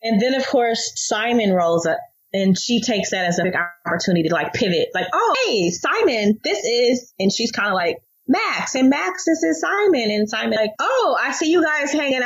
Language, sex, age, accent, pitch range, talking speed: English, female, 20-39, American, 185-250 Hz, 215 wpm